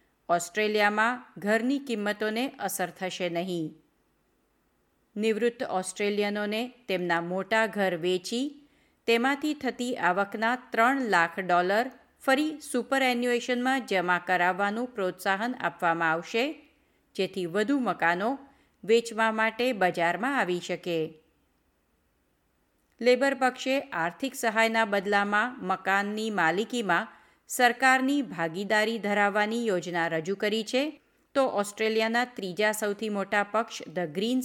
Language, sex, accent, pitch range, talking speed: Gujarati, female, native, 180-240 Hz, 95 wpm